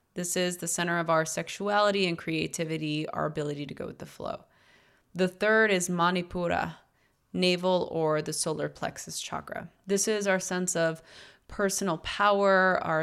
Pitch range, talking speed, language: 165-190 Hz, 155 wpm, English